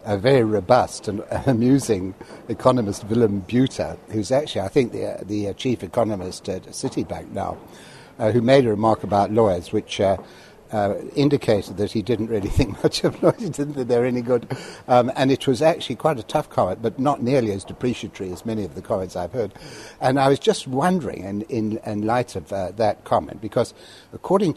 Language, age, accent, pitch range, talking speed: English, 60-79, British, 105-135 Hz, 205 wpm